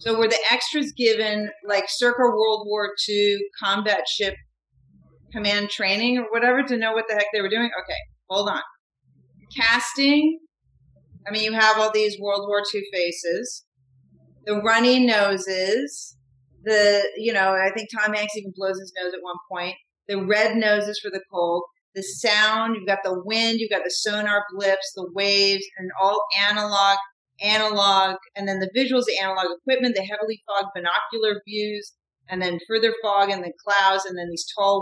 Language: English